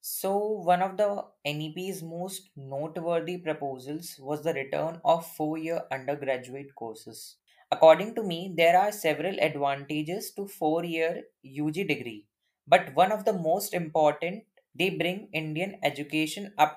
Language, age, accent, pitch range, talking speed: English, 20-39, Indian, 145-185 Hz, 130 wpm